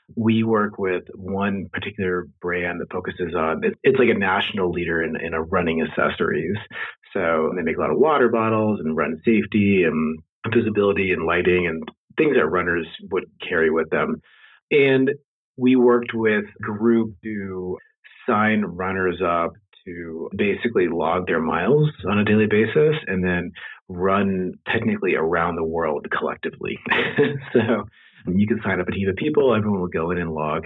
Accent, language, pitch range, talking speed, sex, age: American, English, 90-115 Hz, 160 wpm, male, 30-49